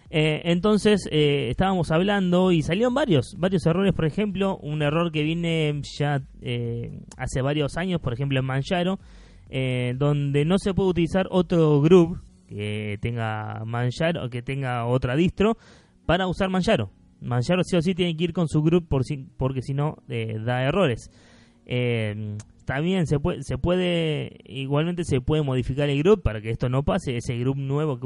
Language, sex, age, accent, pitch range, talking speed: Spanish, male, 20-39, Argentinian, 120-175 Hz, 170 wpm